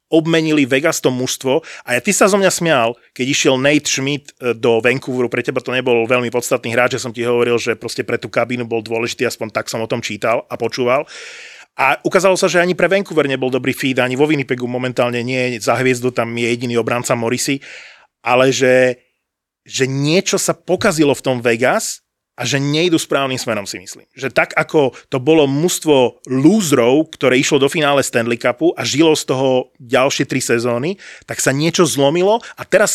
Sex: male